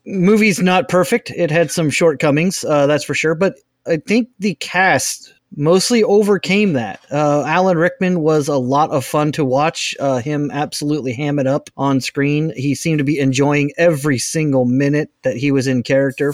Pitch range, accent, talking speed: 135-165 Hz, American, 185 wpm